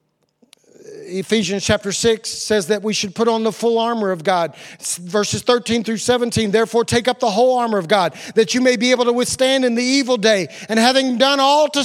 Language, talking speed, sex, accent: English, 215 wpm, male, American